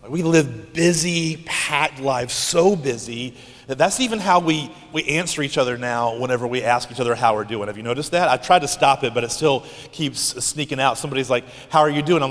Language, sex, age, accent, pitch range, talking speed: English, male, 30-49, American, 120-160 Hz, 235 wpm